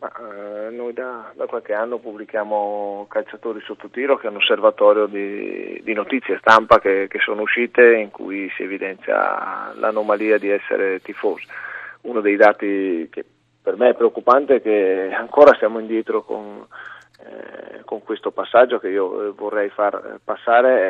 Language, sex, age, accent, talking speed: Italian, male, 40-59, native, 150 wpm